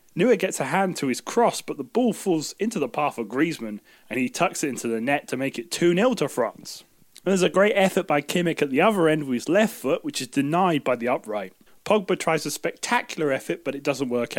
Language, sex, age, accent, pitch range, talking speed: English, male, 30-49, British, 140-195 Hz, 240 wpm